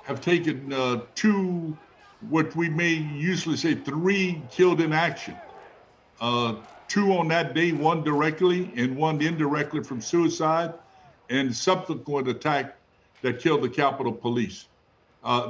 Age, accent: 60-79, American